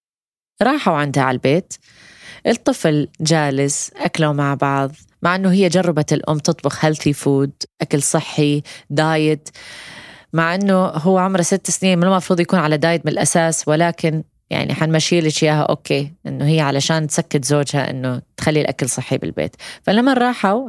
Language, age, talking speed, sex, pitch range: Arabic, 20-39, 145 wpm, female, 145-195 Hz